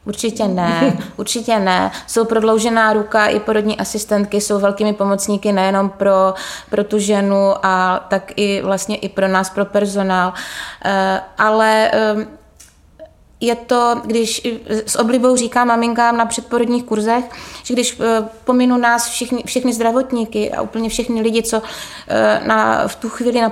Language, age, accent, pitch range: Czech, 20-39, native, 200-220 Hz